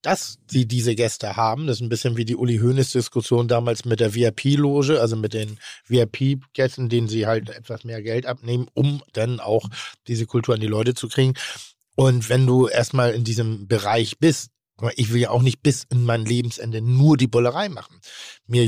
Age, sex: 50-69, male